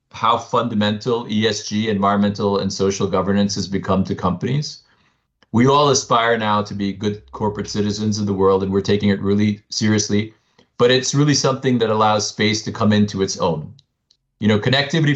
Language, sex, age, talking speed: English, male, 40-59, 175 wpm